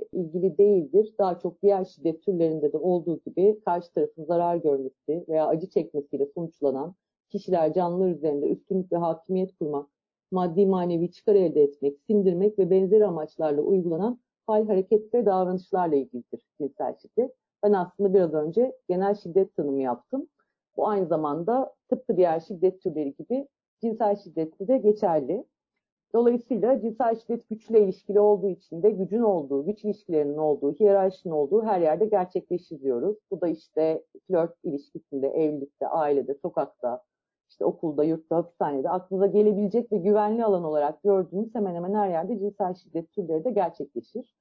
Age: 50-69